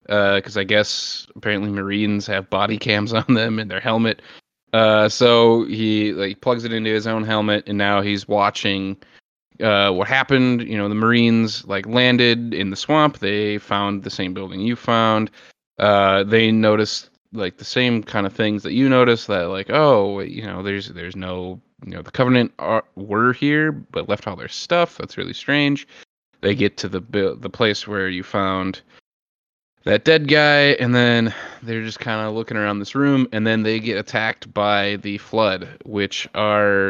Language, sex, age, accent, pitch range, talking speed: English, male, 20-39, American, 100-120 Hz, 185 wpm